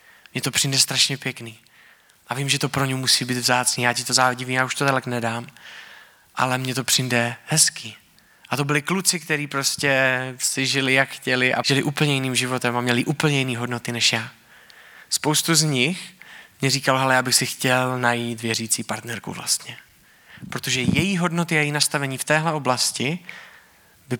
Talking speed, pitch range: 185 wpm, 120-145 Hz